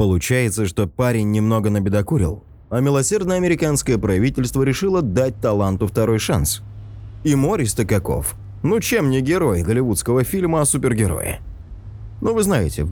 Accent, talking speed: native, 130 wpm